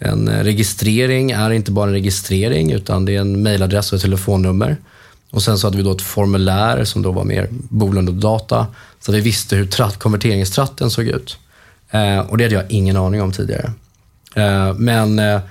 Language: Swedish